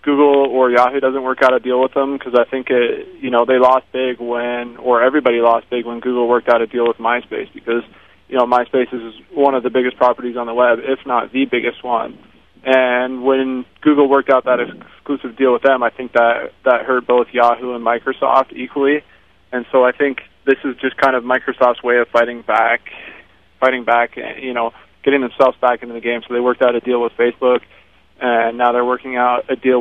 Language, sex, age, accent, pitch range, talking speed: English, male, 20-39, American, 120-130 Hz, 220 wpm